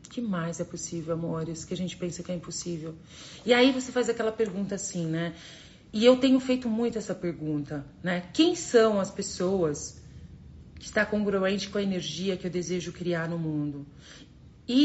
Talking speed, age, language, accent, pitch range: 180 wpm, 40-59, Portuguese, Brazilian, 180-240 Hz